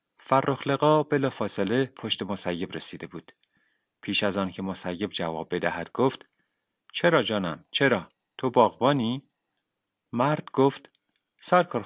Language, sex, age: Persian, male, 30-49